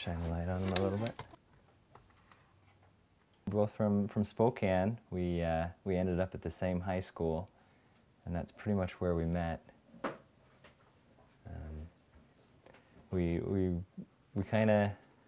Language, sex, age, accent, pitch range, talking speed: English, male, 20-39, American, 85-105 Hz, 120 wpm